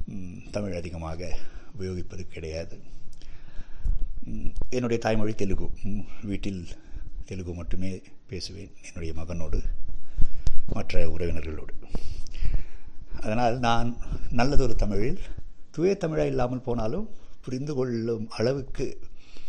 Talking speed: 80 wpm